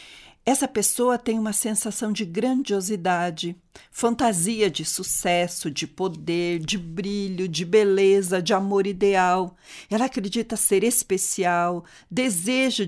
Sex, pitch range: female, 185-230 Hz